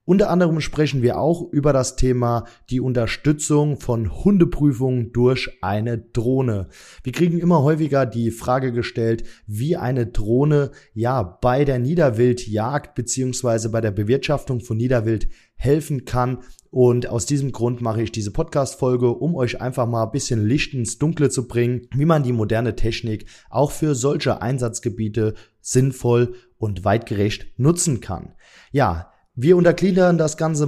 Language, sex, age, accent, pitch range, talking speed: German, male, 20-39, German, 115-135 Hz, 145 wpm